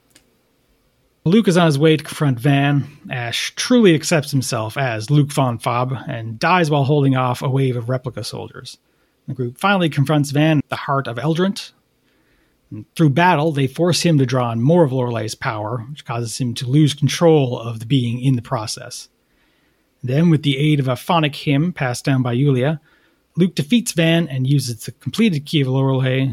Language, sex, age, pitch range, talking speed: English, male, 30-49, 125-160 Hz, 185 wpm